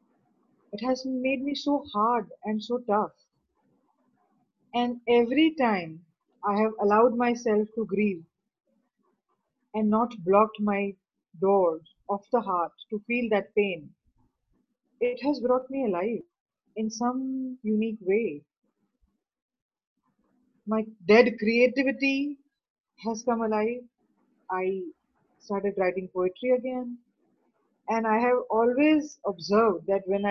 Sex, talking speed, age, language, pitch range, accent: female, 115 wpm, 30-49, English, 200-250 Hz, Indian